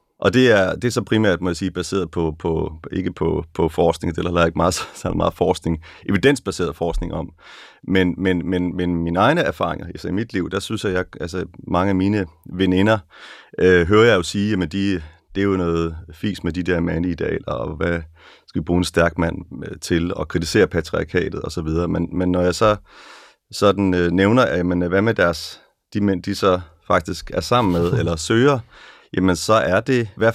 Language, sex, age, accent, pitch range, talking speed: Danish, male, 30-49, native, 85-100 Hz, 205 wpm